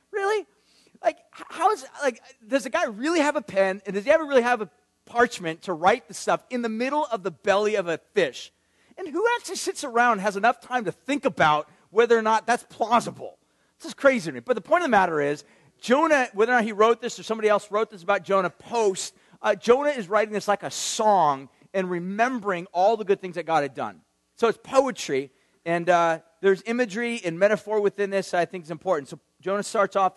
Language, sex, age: English, male, 40-59